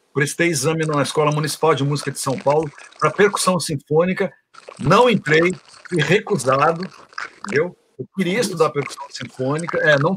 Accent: Brazilian